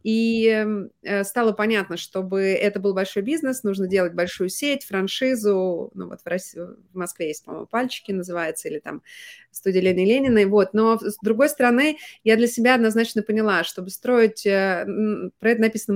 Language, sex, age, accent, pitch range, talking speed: Russian, female, 20-39, native, 200-240 Hz, 155 wpm